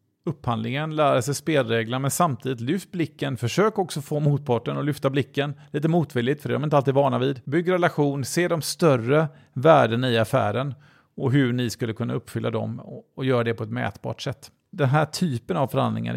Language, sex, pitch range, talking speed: Swedish, male, 120-160 Hz, 195 wpm